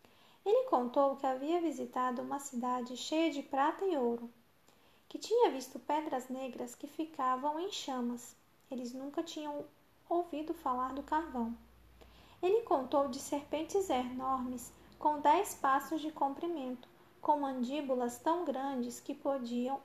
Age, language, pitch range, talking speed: 20-39, Portuguese, 260-325 Hz, 135 wpm